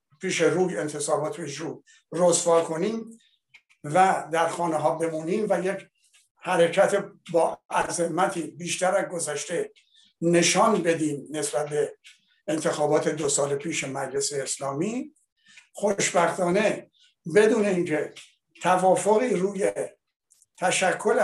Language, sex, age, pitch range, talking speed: Persian, male, 60-79, 155-195 Hz, 95 wpm